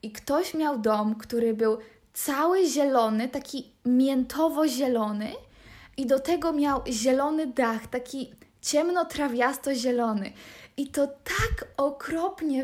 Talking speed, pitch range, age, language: 120 wpm, 230-295 Hz, 20-39, Polish